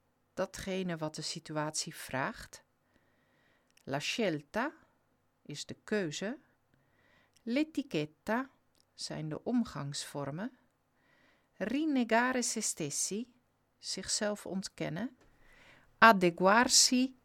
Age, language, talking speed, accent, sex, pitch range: 50-69, Dutch, 70 wpm, Dutch, female, 155-205 Hz